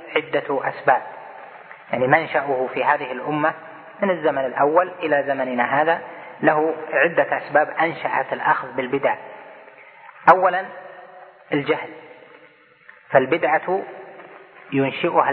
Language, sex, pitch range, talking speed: Arabic, female, 135-165 Hz, 90 wpm